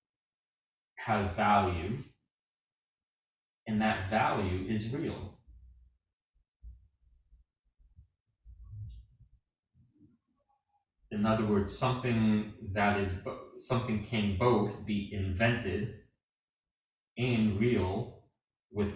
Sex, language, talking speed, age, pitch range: male, English, 65 wpm, 30-49, 95-115 Hz